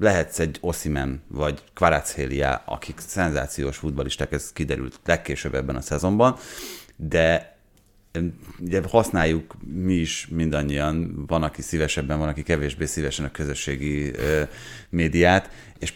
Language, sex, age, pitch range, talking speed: Hungarian, male, 30-49, 75-95 Hz, 120 wpm